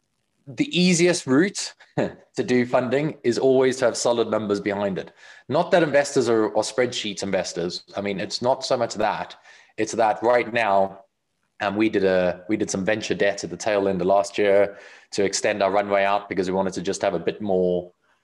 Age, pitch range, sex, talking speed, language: 20-39, 100-120 Hz, male, 205 wpm, English